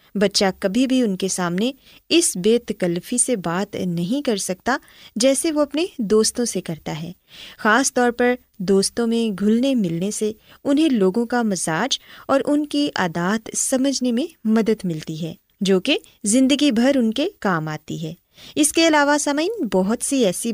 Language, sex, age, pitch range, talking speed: Urdu, female, 20-39, 185-275 Hz, 170 wpm